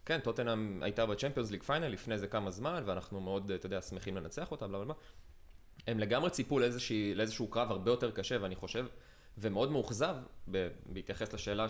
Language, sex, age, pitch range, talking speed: Hebrew, male, 20-39, 95-130 Hz, 180 wpm